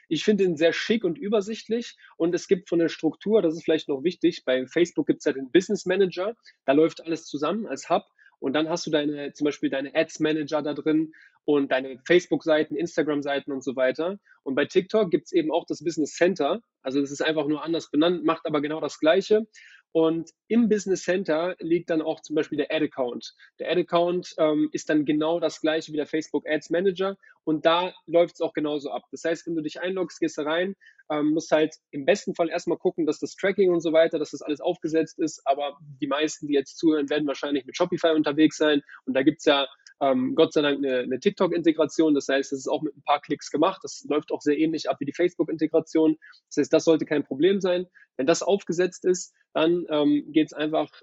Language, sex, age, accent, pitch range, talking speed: English, male, 20-39, German, 145-170 Hz, 220 wpm